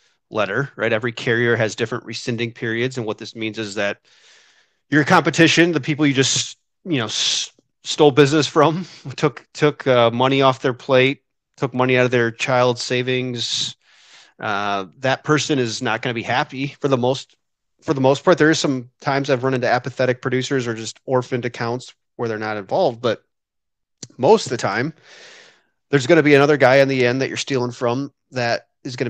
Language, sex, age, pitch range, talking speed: English, male, 30-49, 110-140 Hz, 195 wpm